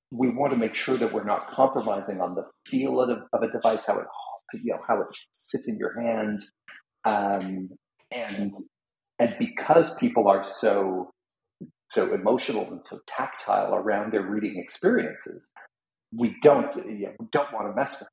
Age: 40-59